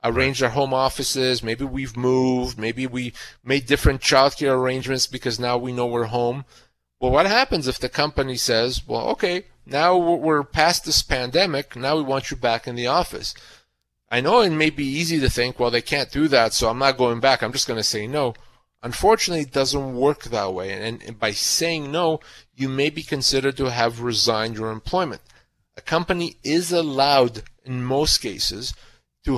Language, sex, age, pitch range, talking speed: English, male, 30-49, 120-150 Hz, 185 wpm